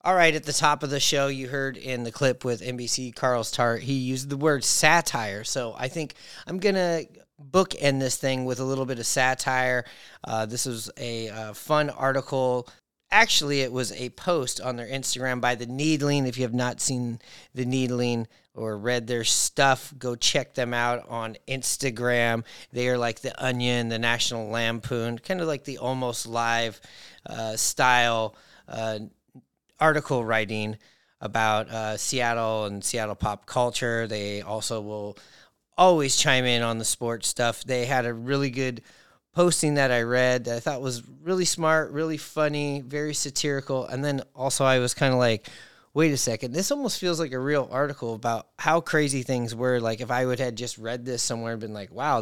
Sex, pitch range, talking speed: male, 115-140 Hz, 185 wpm